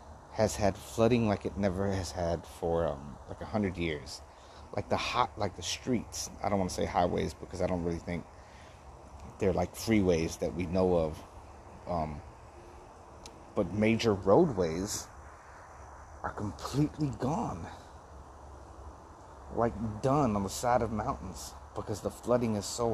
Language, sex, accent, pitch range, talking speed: English, male, American, 80-100 Hz, 150 wpm